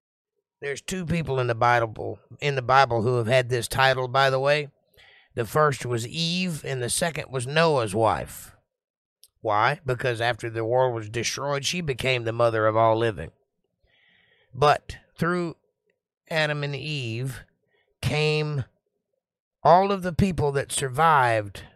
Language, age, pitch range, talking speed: English, 50-69, 120-155 Hz, 145 wpm